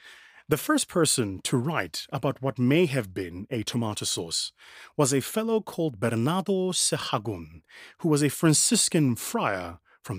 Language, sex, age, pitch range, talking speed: English, male, 30-49, 120-180 Hz, 145 wpm